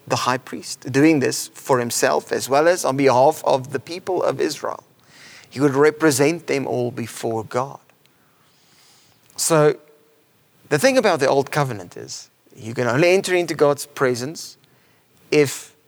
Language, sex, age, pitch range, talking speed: English, male, 30-49, 130-170 Hz, 150 wpm